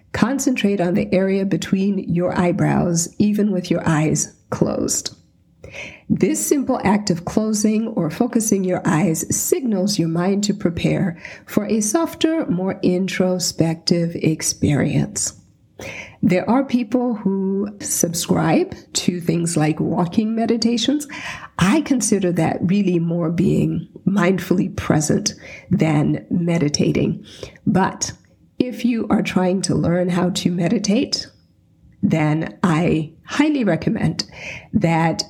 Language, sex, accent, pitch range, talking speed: English, female, American, 170-215 Hz, 115 wpm